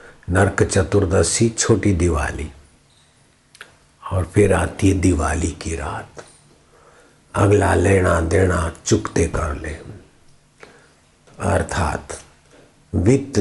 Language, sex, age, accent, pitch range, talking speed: Hindi, male, 60-79, native, 85-100 Hz, 85 wpm